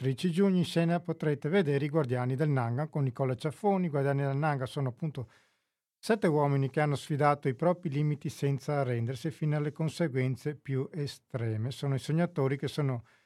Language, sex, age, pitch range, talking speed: Italian, male, 50-69, 130-155 Hz, 175 wpm